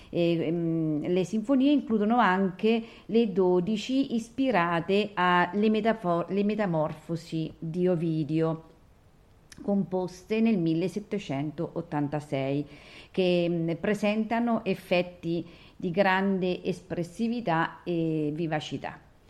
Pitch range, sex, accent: 160-210 Hz, female, native